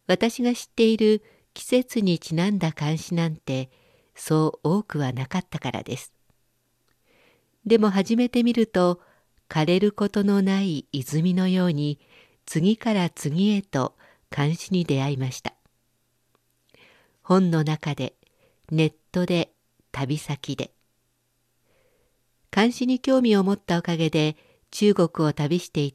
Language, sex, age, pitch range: Japanese, female, 50-69, 140-200 Hz